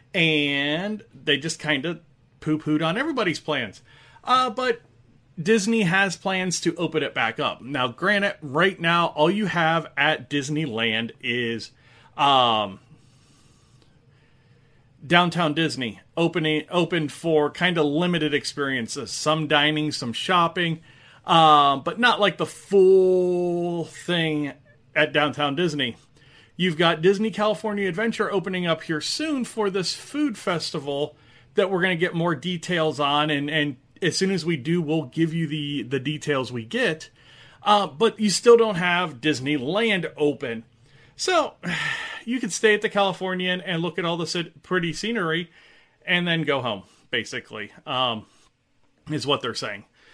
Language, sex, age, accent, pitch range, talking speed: English, male, 30-49, American, 145-180 Hz, 145 wpm